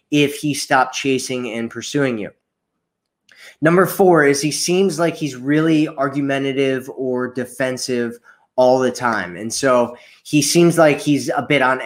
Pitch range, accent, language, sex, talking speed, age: 130-150 Hz, American, English, male, 150 wpm, 20-39